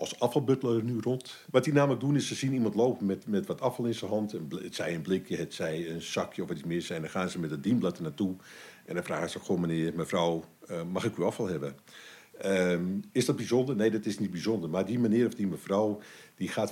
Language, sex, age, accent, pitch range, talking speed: English, male, 50-69, Dutch, 90-125 Hz, 255 wpm